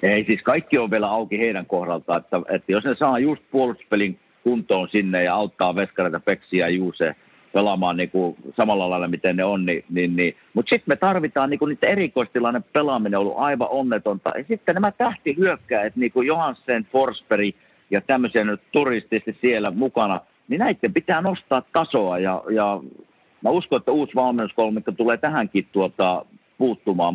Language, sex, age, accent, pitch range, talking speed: Finnish, male, 50-69, native, 95-130 Hz, 160 wpm